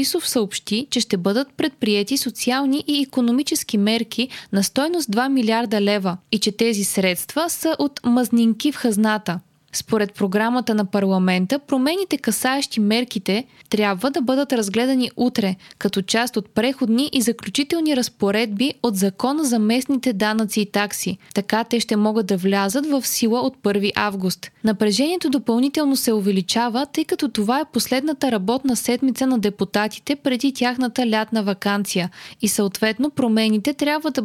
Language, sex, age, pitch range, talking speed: Bulgarian, female, 20-39, 205-265 Hz, 145 wpm